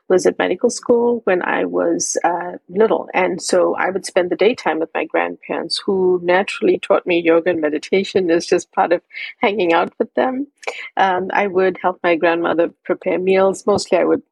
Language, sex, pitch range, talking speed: English, female, 180-240 Hz, 190 wpm